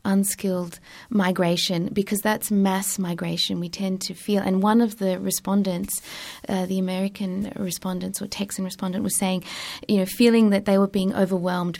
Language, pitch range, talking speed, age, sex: English, 185-210 Hz, 165 wpm, 30-49, female